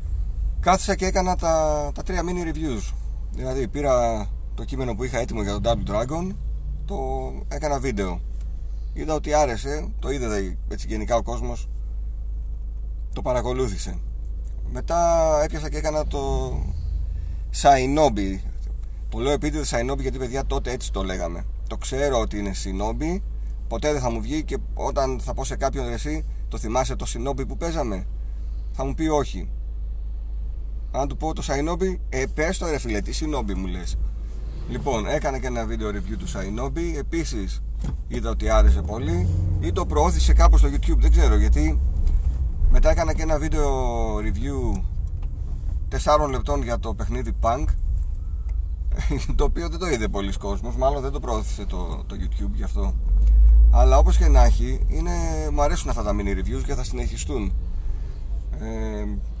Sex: male